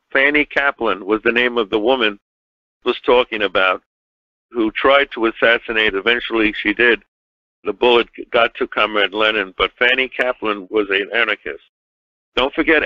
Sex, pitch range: male, 110-130 Hz